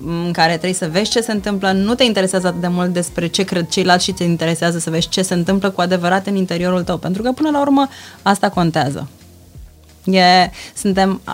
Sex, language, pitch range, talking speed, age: female, Romanian, 170-220 Hz, 210 wpm, 20-39